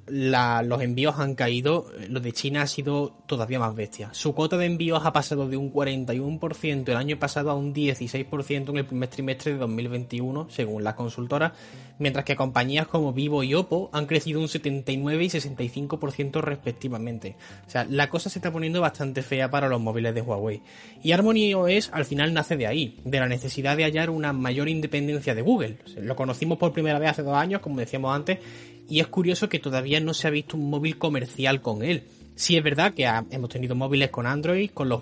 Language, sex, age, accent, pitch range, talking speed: Spanish, male, 20-39, Spanish, 125-155 Hz, 205 wpm